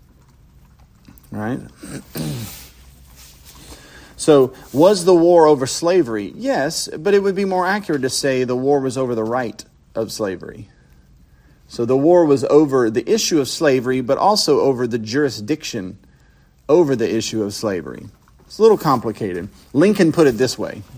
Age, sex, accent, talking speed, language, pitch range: 40-59, male, American, 150 wpm, English, 105-150 Hz